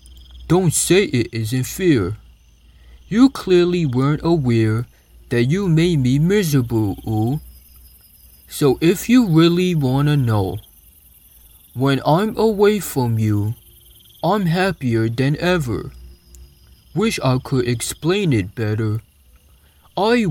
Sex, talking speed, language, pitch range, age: male, 110 wpm, English, 95-150 Hz, 20-39